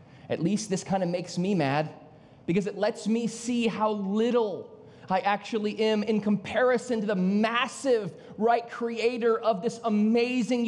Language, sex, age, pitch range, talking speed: English, male, 30-49, 165-235 Hz, 155 wpm